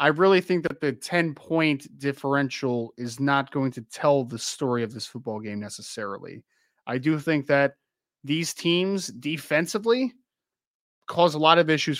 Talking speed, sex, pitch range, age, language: 160 wpm, male, 135-165 Hz, 20-39, English